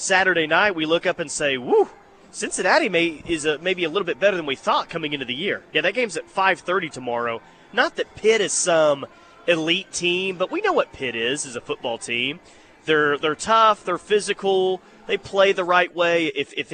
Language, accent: English, American